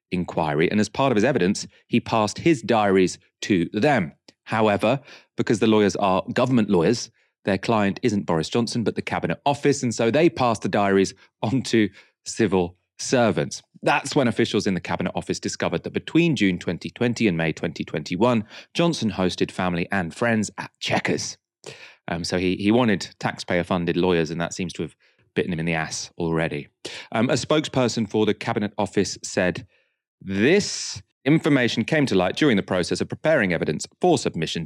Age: 30-49